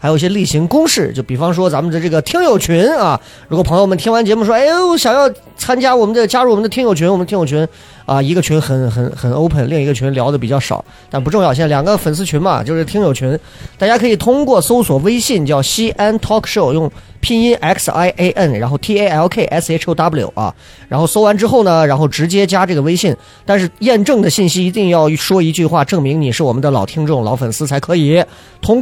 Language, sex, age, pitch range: Chinese, male, 30-49, 145-205 Hz